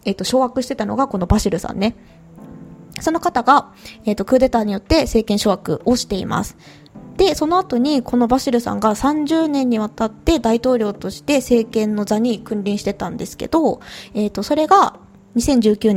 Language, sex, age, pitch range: Japanese, female, 20-39, 205-265 Hz